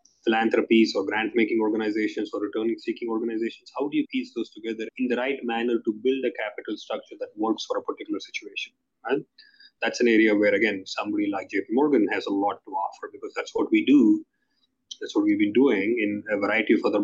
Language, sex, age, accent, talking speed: English, male, 20-39, Indian, 200 wpm